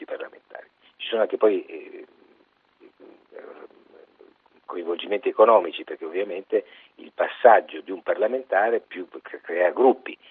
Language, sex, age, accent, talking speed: Italian, male, 50-69, native, 100 wpm